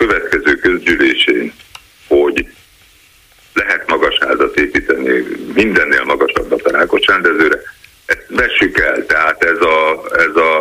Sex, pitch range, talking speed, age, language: male, 335-475 Hz, 105 wpm, 50-69, Hungarian